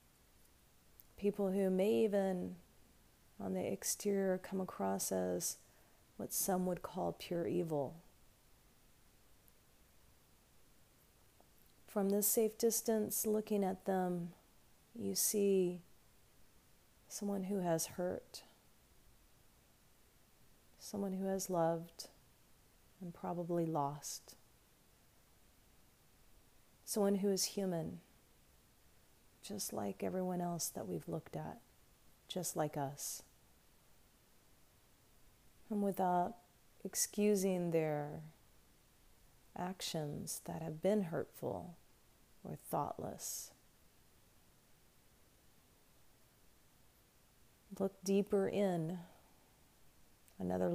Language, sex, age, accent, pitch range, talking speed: English, female, 40-59, American, 160-195 Hz, 80 wpm